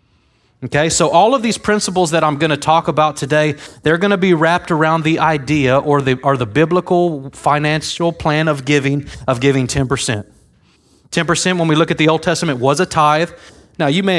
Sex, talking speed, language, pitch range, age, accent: male, 200 wpm, English, 135-170 Hz, 30-49, American